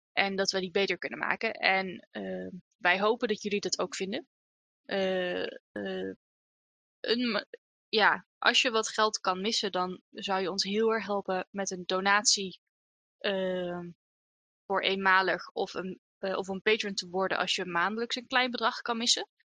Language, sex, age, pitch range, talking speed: Dutch, female, 20-39, 185-215 Hz, 165 wpm